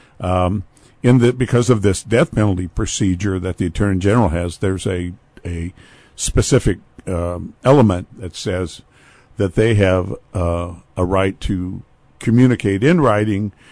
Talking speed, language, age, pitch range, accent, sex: 140 wpm, English, 60-79, 90-110 Hz, American, male